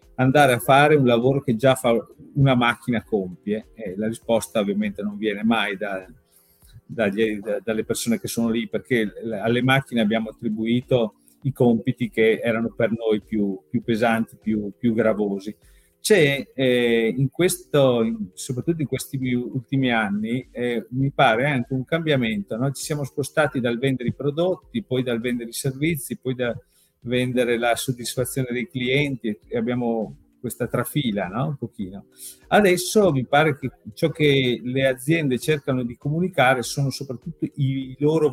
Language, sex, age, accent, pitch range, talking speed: Italian, male, 40-59, native, 115-140 Hz, 160 wpm